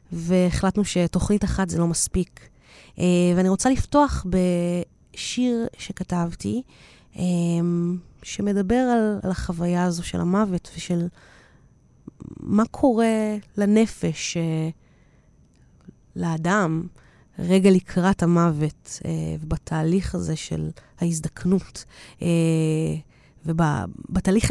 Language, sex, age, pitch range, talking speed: Hebrew, female, 20-39, 170-205 Hz, 75 wpm